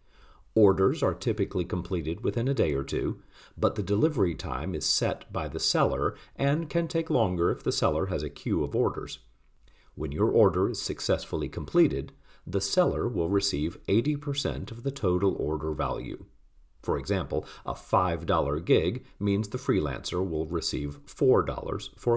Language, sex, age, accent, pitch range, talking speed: English, male, 40-59, American, 85-130 Hz, 155 wpm